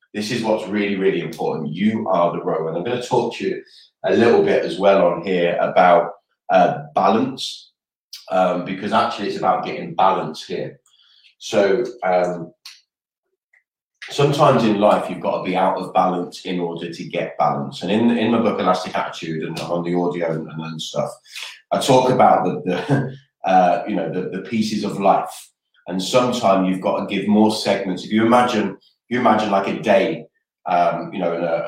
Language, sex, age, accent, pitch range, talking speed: English, male, 20-39, British, 90-110 Hz, 190 wpm